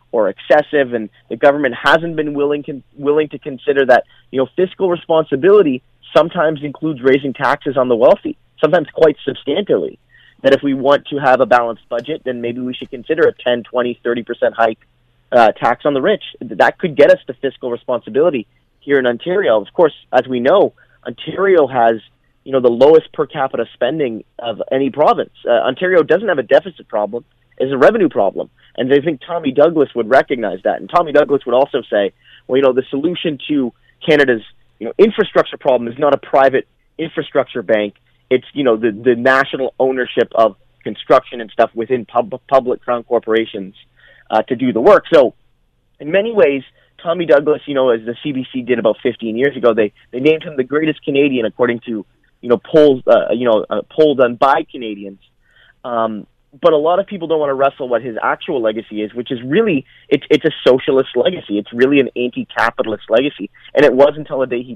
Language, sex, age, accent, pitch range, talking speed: English, male, 30-49, American, 120-150 Hz, 195 wpm